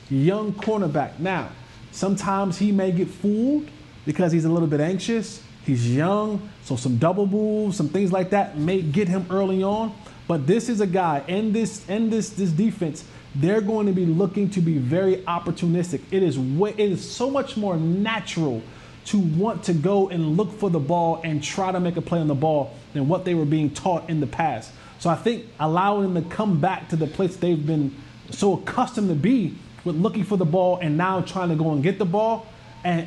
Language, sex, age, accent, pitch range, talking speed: English, male, 20-39, American, 165-210 Hz, 210 wpm